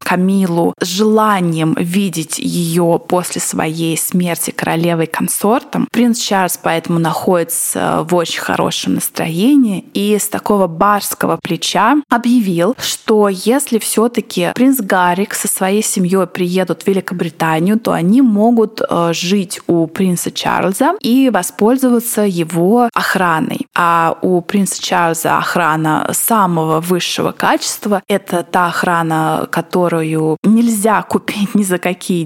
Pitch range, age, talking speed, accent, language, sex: 175-230 Hz, 20-39, 115 wpm, native, Russian, female